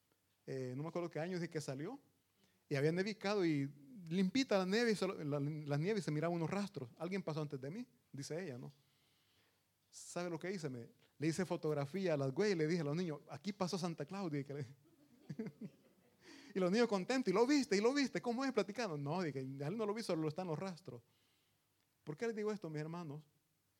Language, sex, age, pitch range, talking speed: Italian, male, 30-49, 120-185 Hz, 215 wpm